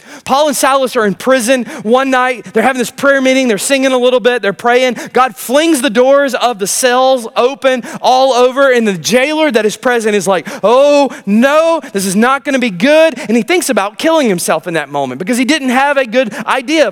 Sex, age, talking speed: male, 30-49, 220 wpm